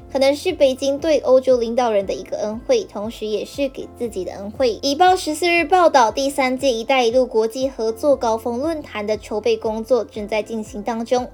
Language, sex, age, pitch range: Chinese, male, 10-29, 220-280 Hz